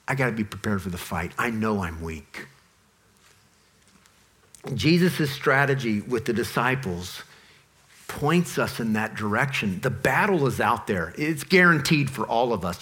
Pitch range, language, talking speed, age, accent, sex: 135-180 Hz, English, 150 wpm, 50-69, American, male